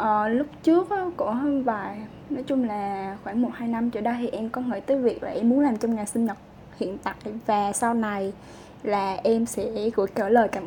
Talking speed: 240 wpm